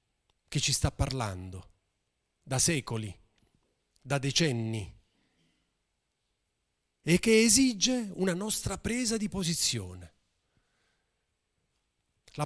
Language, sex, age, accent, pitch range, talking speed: Italian, male, 40-59, native, 120-190 Hz, 80 wpm